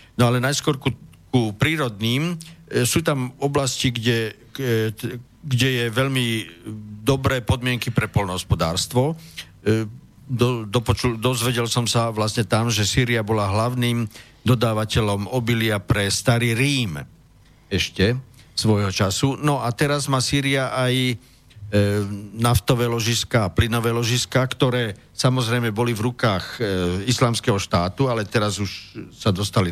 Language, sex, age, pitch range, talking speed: Slovak, male, 50-69, 105-125 Hz, 125 wpm